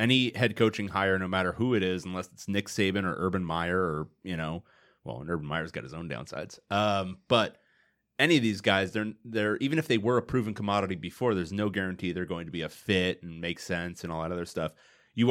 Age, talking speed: 30-49, 240 wpm